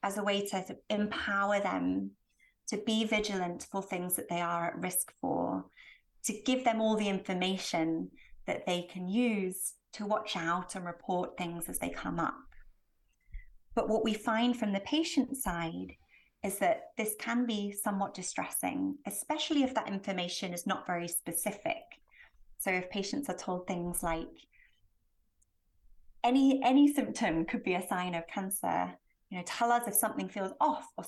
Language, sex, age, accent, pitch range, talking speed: English, female, 30-49, British, 180-235 Hz, 165 wpm